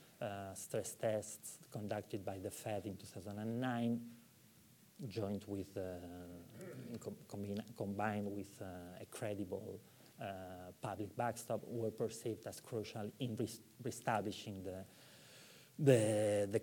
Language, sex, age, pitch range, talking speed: English, male, 30-49, 100-120 Hz, 110 wpm